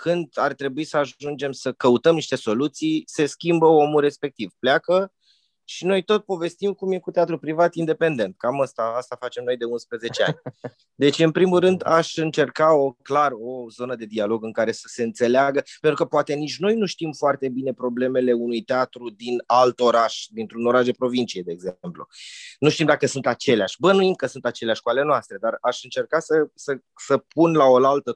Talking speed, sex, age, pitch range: 195 wpm, male, 20-39, 120-155 Hz